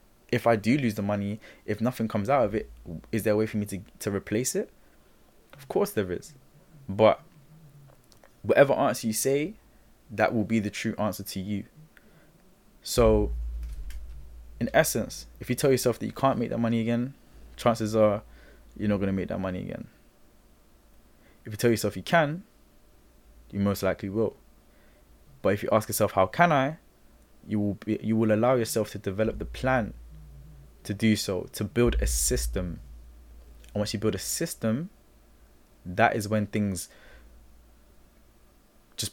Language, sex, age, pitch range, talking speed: English, male, 20-39, 95-110 Hz, 170 wpm